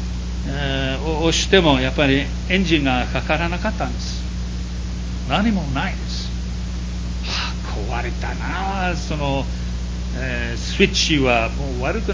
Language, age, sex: Japanese, 60-79, male